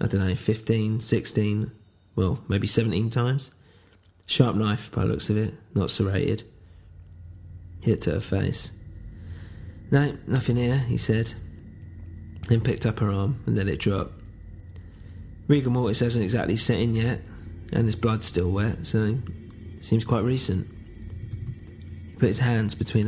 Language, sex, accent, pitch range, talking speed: English, male, British, 95-115 Hz, 155 wpm